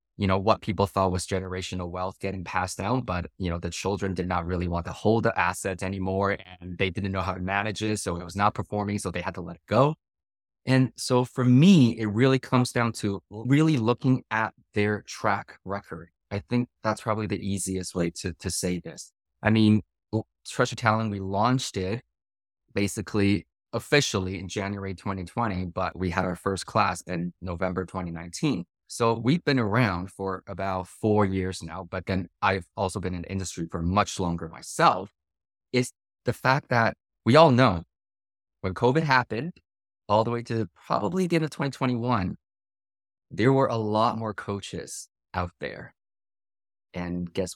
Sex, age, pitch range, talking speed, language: male, 20-39, 90-110 Hz, 180 wpm, English